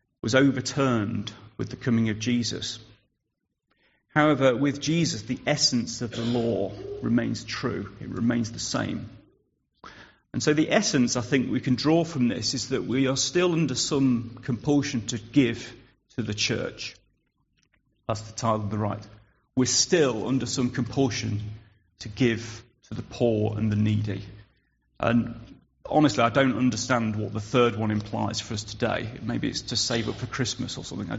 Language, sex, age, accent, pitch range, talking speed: English, male, 40-59, British, 110-135 Hz, 165 wpm